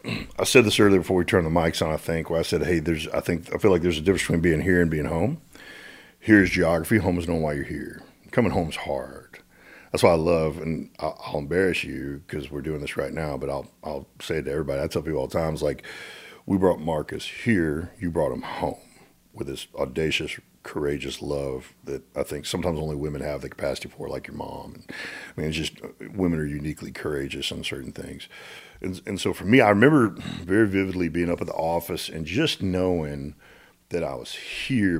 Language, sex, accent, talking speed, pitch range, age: English, male, American, 225 wpm, 75-90 Hz, 40-59